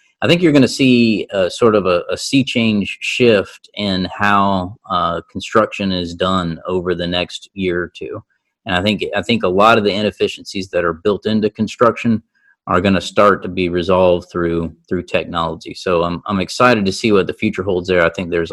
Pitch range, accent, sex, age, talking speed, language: 95-120 Hz, American, male, 40-59, 210 wpm, English